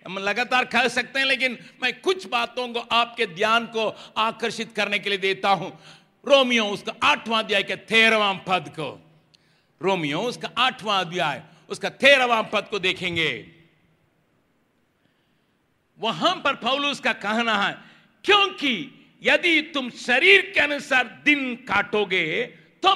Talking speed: 125 wpm